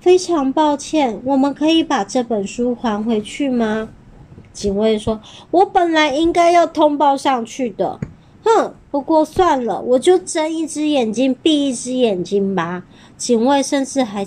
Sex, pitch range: male, 200-275 Hz